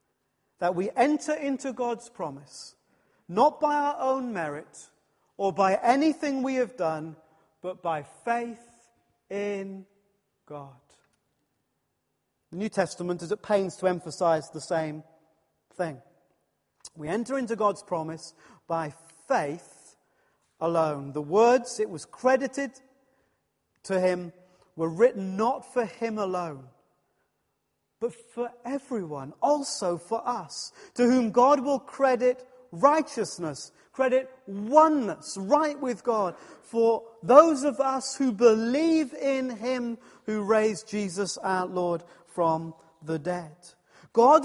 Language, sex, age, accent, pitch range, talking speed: English, male, 40-59, British, 175-265 Hz, 120 wpm